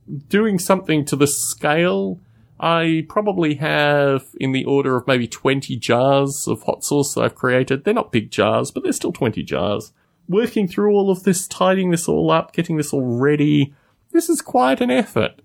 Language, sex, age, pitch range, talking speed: English, male, 30-49, 120-180 Hz, 185 wpm